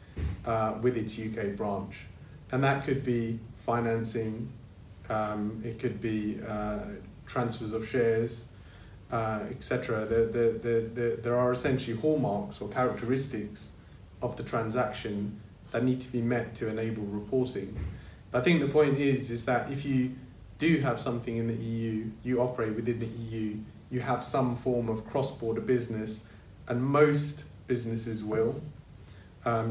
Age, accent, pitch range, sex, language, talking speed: 30-49, British, 110-125 Hz, male, English, 150 wpm